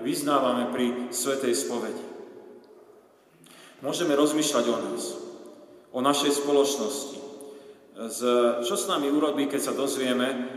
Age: 40-59